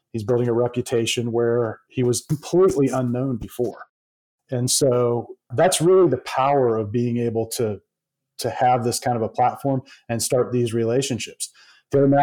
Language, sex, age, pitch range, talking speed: English, male, 40-59, 115-130 Hz, 155 wpm